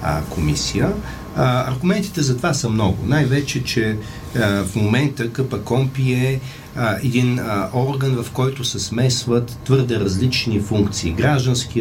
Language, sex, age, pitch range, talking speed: Bulgarian, male, 50-69, 95-125 Hz, 130 wpm